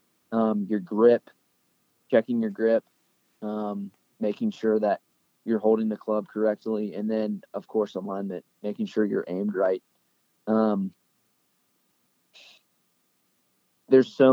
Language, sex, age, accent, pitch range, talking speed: English, male, 20-39, American, 100-110 Hz, 115 wpm